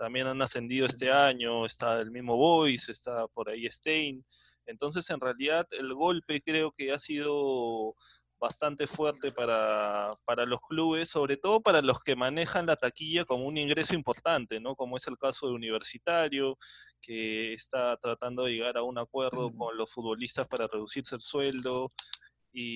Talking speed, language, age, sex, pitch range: 165 wpm, Spanish, 20-39, male, 120-150 Hz